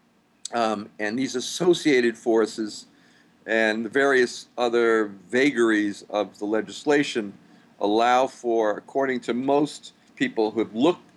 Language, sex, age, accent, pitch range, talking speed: English, male, 50-69, American, 110-130 Hz, 120 wpm